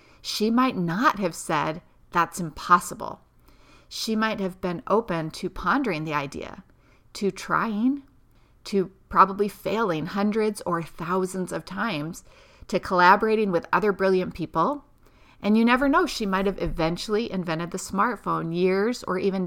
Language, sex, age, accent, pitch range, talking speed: English, female, 40-59, American, 175-215 Hz, 140 wpm